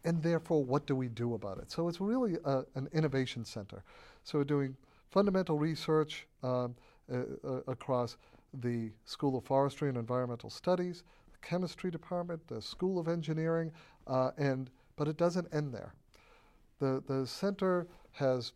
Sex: male